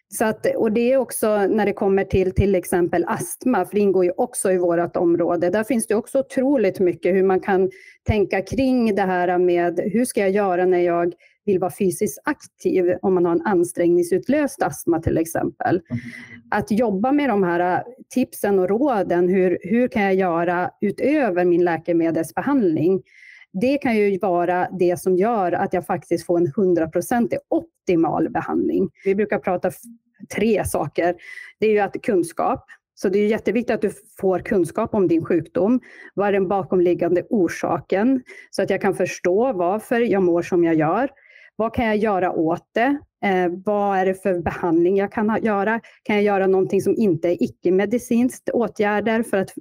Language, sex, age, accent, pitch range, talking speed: Swedish, female, 30-49, native, 180-225 Hz, 180 wpm